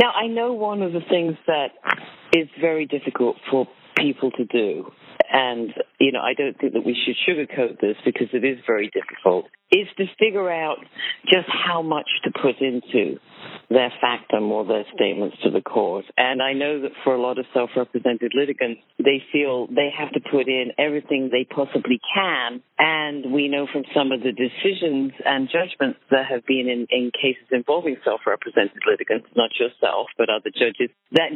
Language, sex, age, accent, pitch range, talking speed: English, female, 50-69, British, 135-190 Hz, 185 wpm